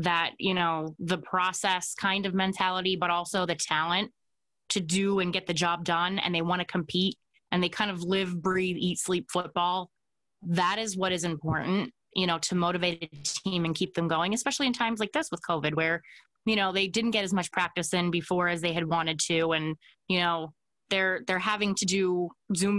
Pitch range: 170-195 Hz